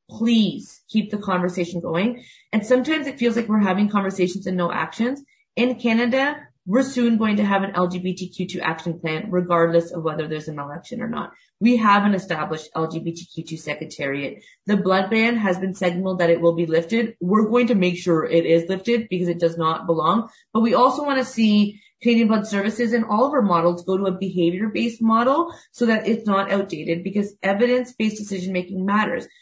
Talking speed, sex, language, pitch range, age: 190 wpm, female, English, 175-225 Hz, 30-49